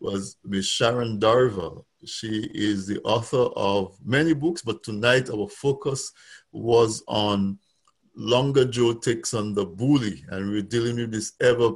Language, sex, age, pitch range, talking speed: English, male, 50-69, 100-120 Hz, 150 wpm